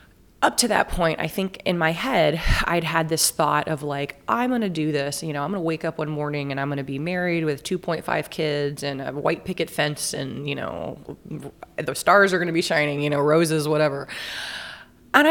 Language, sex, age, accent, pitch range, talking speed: English, female, 20-39, American, 145-175 Hz, 210 wpm